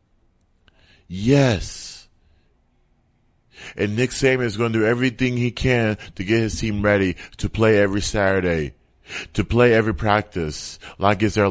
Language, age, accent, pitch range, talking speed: English, 30-49, American, 90-120 Hz, 135 wpm